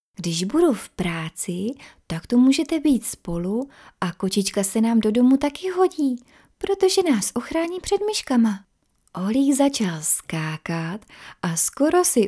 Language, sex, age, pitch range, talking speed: Czech, female, 30-49, 185-280 Hz, 135 wpm